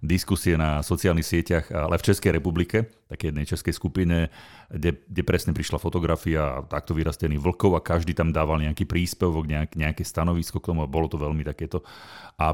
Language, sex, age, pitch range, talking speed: Slovak, male, 40-59, 80-95 Hz, 165 wpm